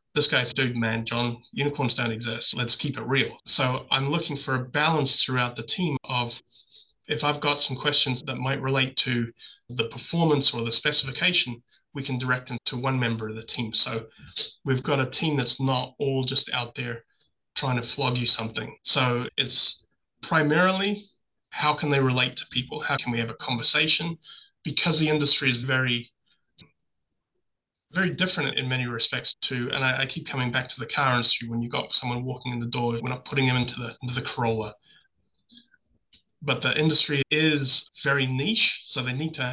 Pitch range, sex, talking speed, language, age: 120-145 Hz, male, 190 wpm, English, 30-49